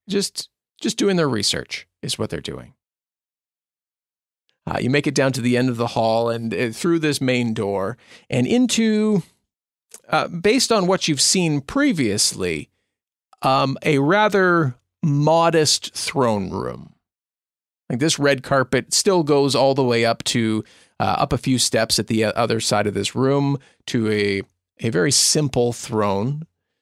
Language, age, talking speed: English, 40-59, 155 wpm